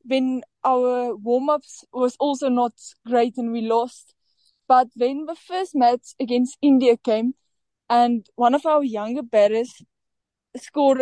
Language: English